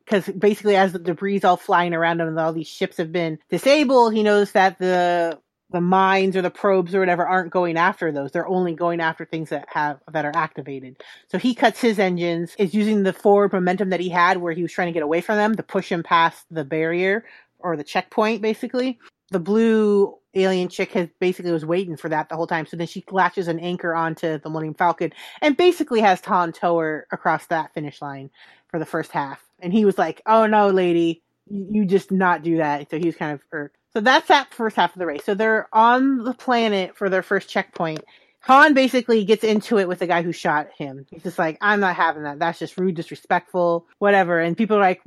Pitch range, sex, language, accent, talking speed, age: 165-205 Hz, female, English, American, 230 wpm, 30-49